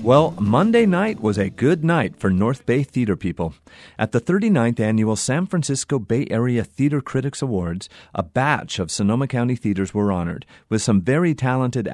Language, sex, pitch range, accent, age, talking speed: English, male, 100-135 Hz, American, 40-59, 175 wpm